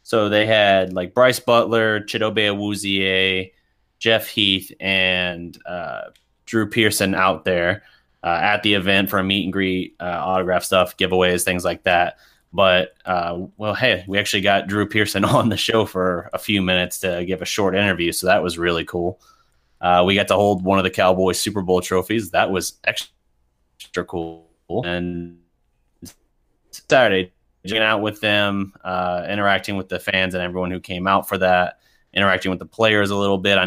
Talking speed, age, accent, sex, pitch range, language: 175 wpm, 30-49, American, male, 90-100 Hz, English